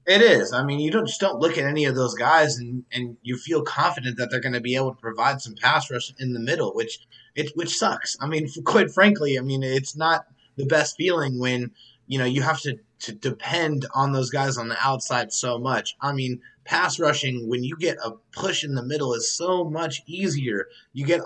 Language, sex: English, male